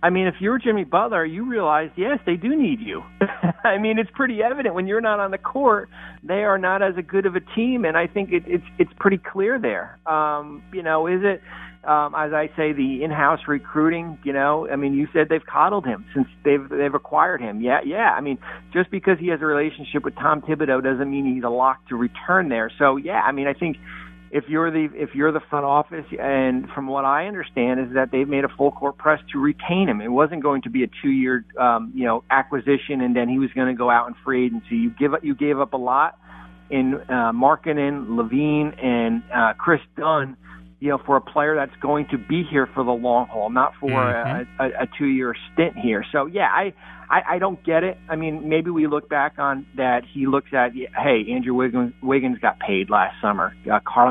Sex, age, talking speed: male, 50-69, 235 wpm